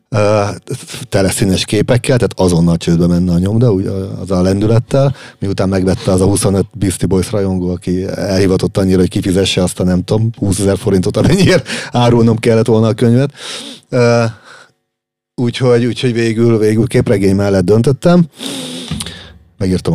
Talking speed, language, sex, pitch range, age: 135 wpm, Hungarian, male, 95-125 Hz, 40-59